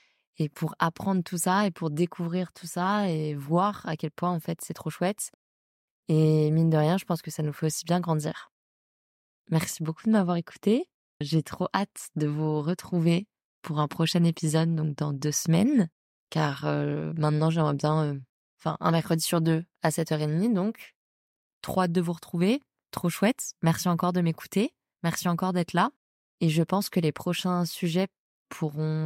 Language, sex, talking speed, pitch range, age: French, female, 185 wpm, 155-180 Hz, 20-39